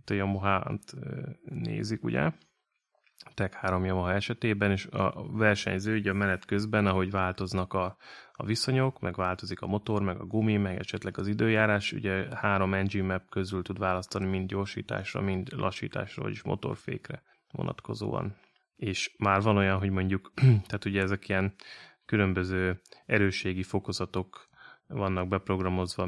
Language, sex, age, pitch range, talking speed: Hungarian, male, 20-39, 95-110 Hz, 140 wpm